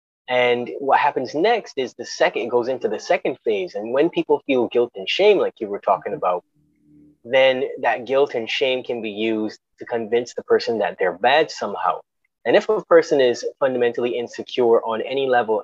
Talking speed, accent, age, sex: 190 wpm, American, 20-39, male